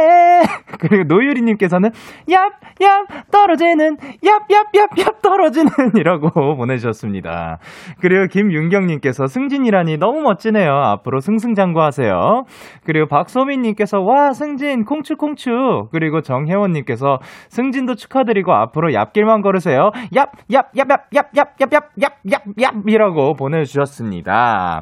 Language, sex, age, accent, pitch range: Korean, male, 20-39, native, 155-245 Hz